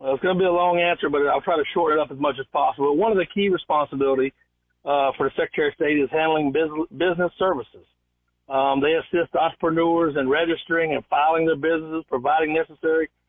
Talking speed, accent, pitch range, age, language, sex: 200 wpm, American, 150-180 Hz, 50-69, English, male